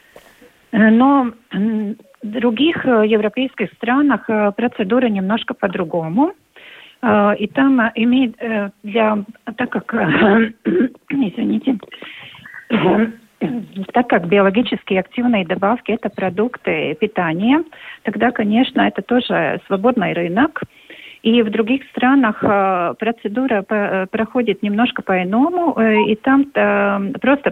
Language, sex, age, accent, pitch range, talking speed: Russian, female, 40-59, native, 205-255 Hz, 90 wpm